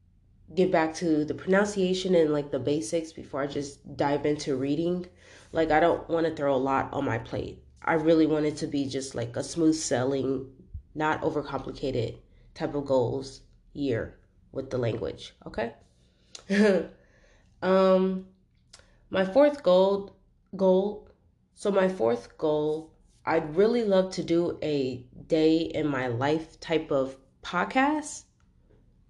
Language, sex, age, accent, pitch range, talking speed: English, female, 30-49, American, 140-175 Hz, 135 wpm